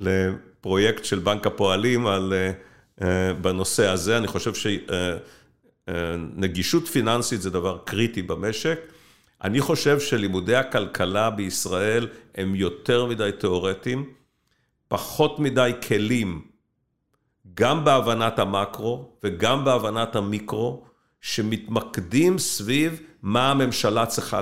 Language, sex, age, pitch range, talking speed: Hebrew, male, 50-69, 105-150 Hz, 105 wpm